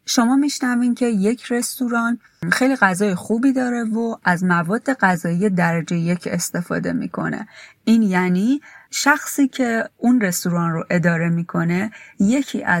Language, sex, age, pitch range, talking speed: Persian, female, 30-49, 180-230 Hz, 125 wpm